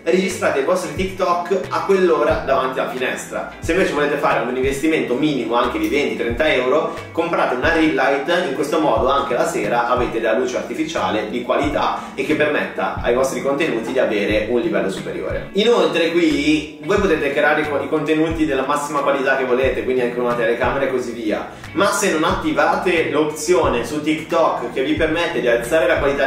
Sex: male